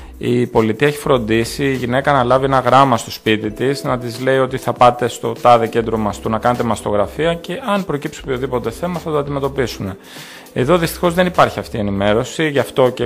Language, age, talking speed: Greek, 30-49, 200 wpm